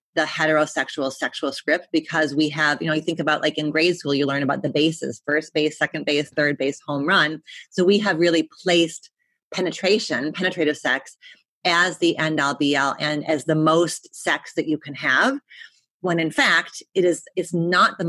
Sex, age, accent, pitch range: female, 30-49, American, 150-175 Hz